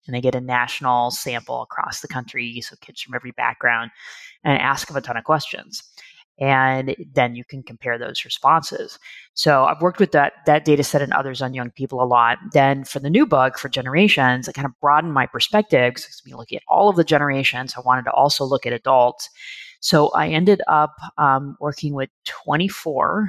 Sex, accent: female, American